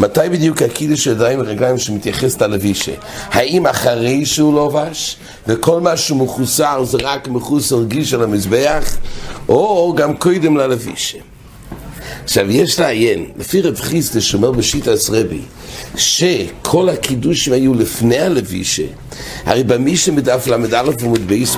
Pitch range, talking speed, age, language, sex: 120-165 Hz, 130 wpm, 60-79, English, male